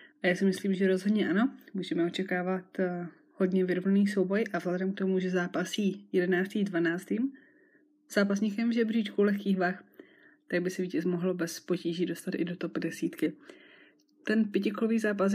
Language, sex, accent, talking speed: Czech, female, native, 150 wpm